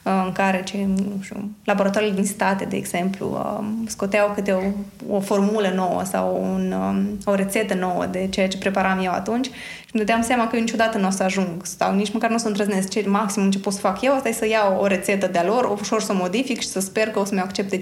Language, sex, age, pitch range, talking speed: Romanian, female, 20-39, 195-230 Hz, 235 wpm